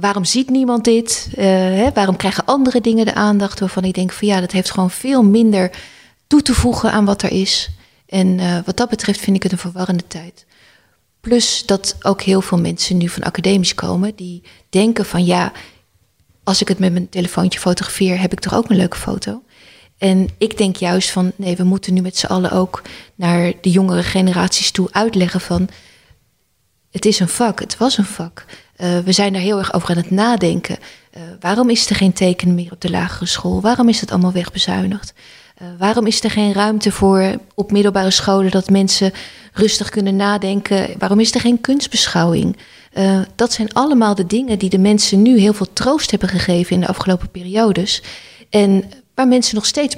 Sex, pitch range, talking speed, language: female, 185-215 Hz, 200 wpm, Dutch